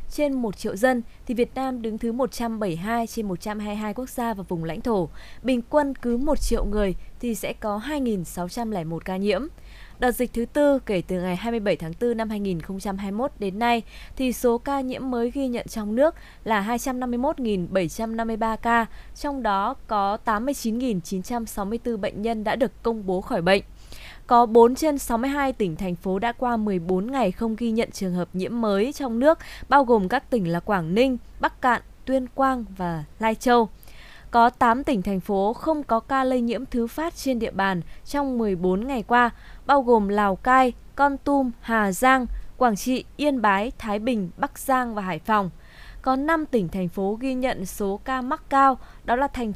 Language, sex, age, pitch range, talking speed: Vietnamese, female, 20-39, 205-260 Hz, 185 wpm